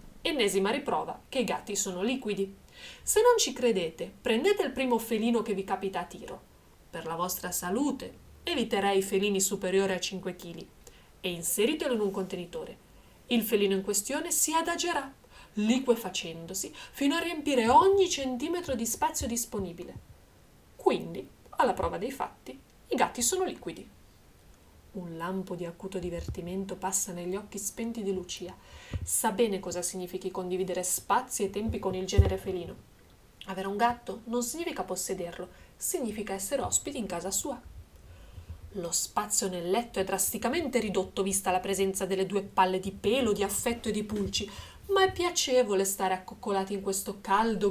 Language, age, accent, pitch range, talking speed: Italian, 30-49, native, 185-250 Hz, 155 wpm